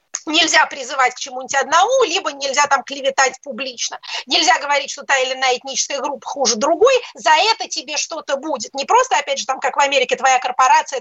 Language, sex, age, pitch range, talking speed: Russian, female, 30-49, 270-345 Hz, 190 wpm